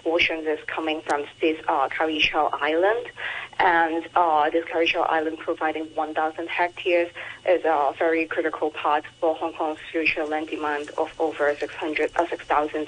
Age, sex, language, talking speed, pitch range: 30-49, female, English, 140 wpm, 160-180 Hz